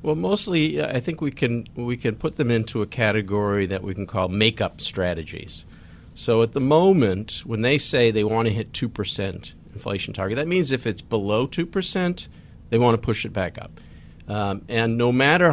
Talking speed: 195 wpm